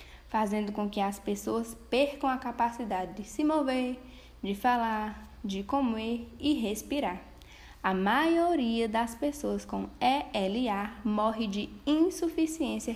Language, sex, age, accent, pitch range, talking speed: Portuguese, female, 10-29, Brazilian, 195-245 Hz, 120 wpm